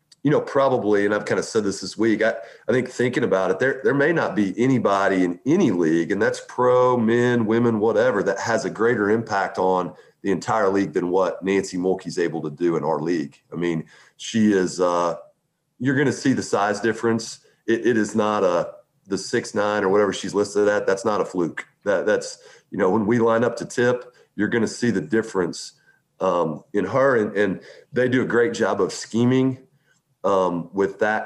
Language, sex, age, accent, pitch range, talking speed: English, male, 40-59, American, 95-120 Hz, 215 wpm